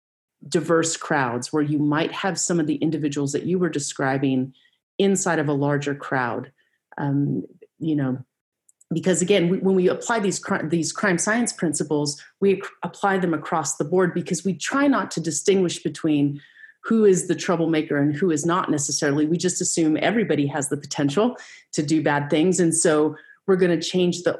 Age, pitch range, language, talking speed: 30-49, 145-180 Hz, English, 185 wpm